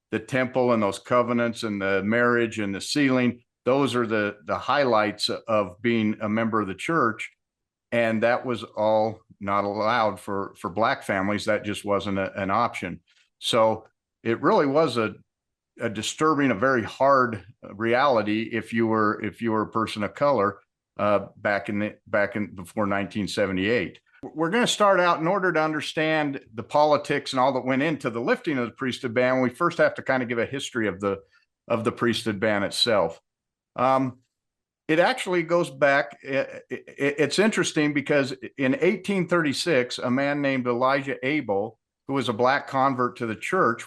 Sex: male